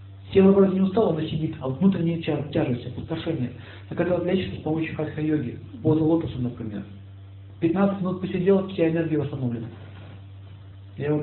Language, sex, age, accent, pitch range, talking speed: Russian, male, 50-69, native, 100-155 Hz, 160 wpm